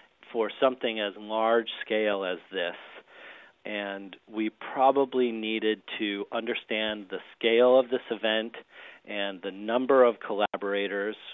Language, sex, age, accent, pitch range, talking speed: English, male, 40-59, American, 105-125 Hz, 120 wpm